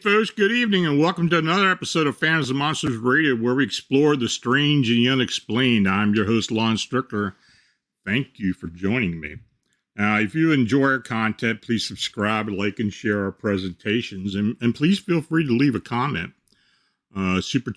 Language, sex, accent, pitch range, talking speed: English, male, American, 105-135 Hz, 185 wpm